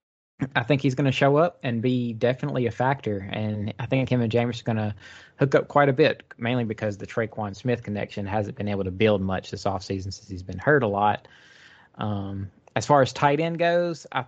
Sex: male